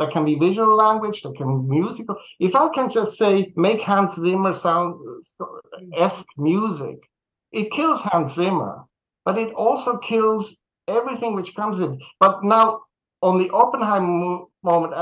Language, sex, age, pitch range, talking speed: English, male, 60-79, 165-205 Hz, 150 wpm